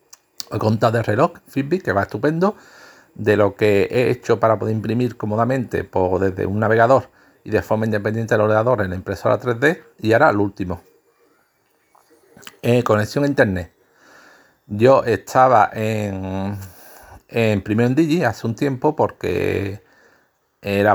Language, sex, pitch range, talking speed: Spanish, male, 100-135 Hz, 145 wpm